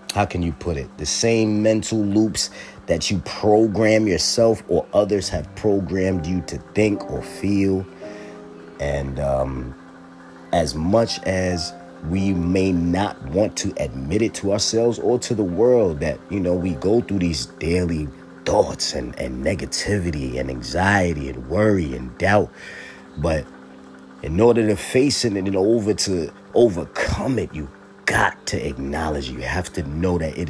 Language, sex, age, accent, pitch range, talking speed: English, male, 30-49, American, 75-100 Hz, 155 wpm